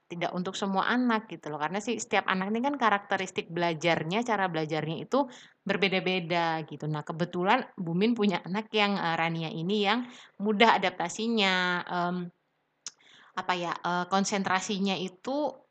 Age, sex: 20-39, female